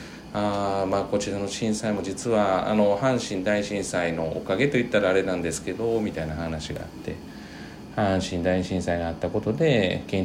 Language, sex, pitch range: Japanese, male, 85-110 Hz